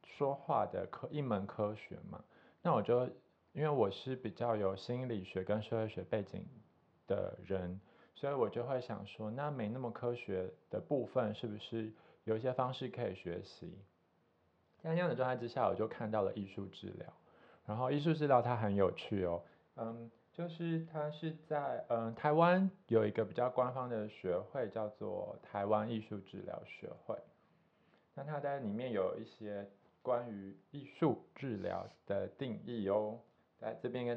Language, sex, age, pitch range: Chinese, male, 20-39, 105-140 Hz